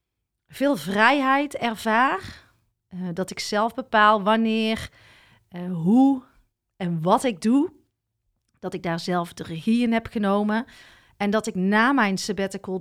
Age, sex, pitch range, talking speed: 40-59, female, 180-225 Hz, 130 wpm